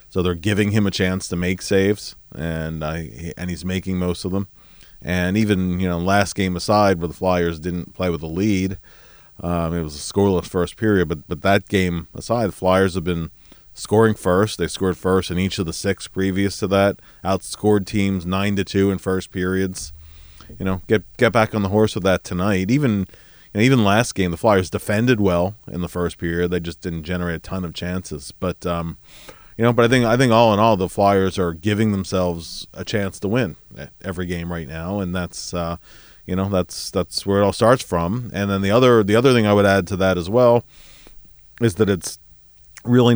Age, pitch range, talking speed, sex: 30-49, 90-100 Hz, 220 wpm, male